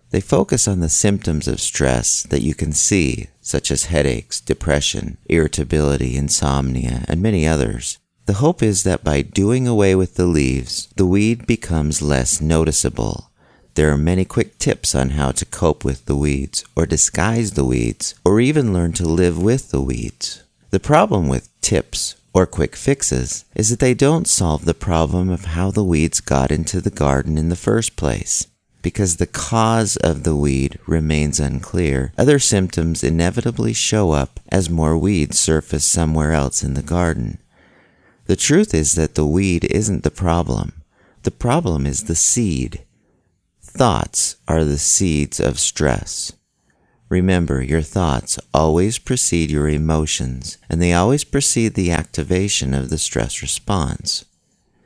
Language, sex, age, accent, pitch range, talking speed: English, male, 40-59, American, 75-100 Hz, 160 wpm